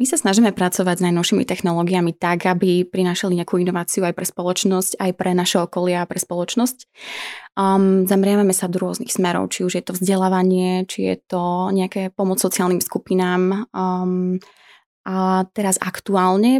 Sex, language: female, Slovak